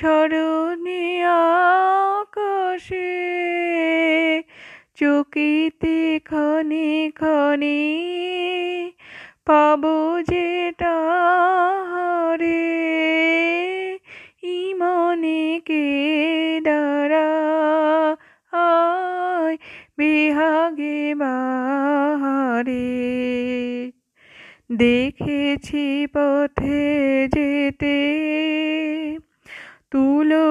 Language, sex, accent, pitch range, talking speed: Bengali, female, native, 285-335 Hz, 35 wpm